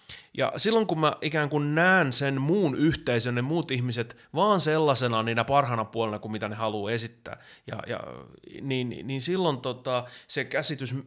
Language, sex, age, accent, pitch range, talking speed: Finnish, male, 30-49, native, 115-150 Hz, 170 wpm